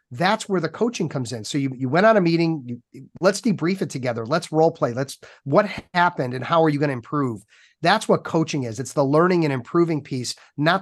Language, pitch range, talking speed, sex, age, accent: English, 135-165 Hz, 235 wpm, male, 30-49, American